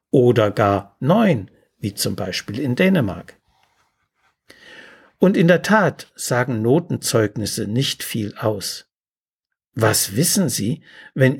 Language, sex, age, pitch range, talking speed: German, male, 60-79, 125-170 Hz, 110 wpm